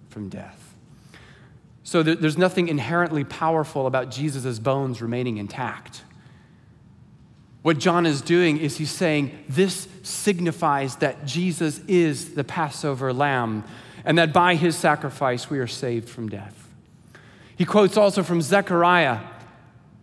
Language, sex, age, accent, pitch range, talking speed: English, male, 30-49, American, 150-195 Hz, 125 wpm